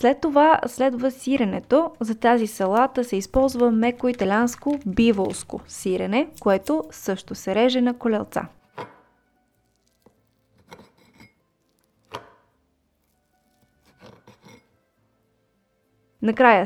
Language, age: Bulgarian, 20-39